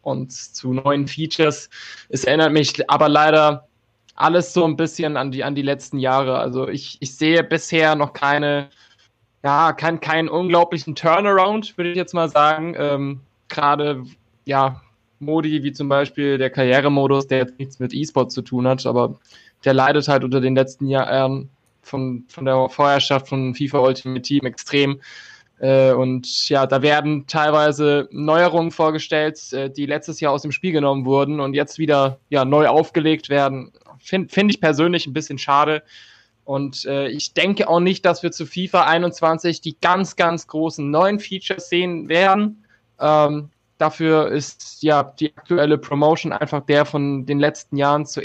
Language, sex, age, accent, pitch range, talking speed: German, male, 20-39, German, 135-160 Hz, 165 wpm